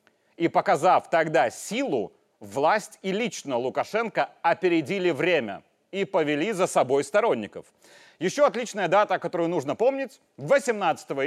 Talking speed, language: 115 wpm, Russian